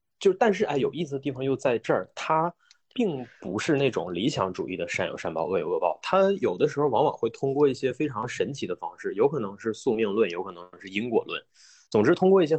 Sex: male